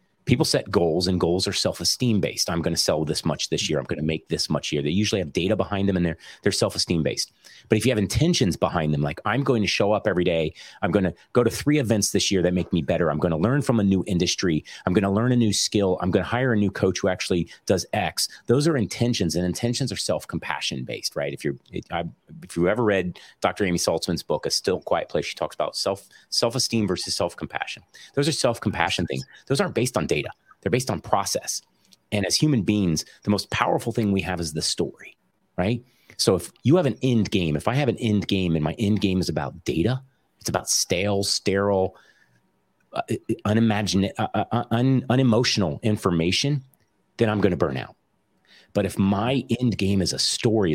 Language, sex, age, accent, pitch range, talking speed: English, male, 30-49, American, 90-115 Hz, 225 wpm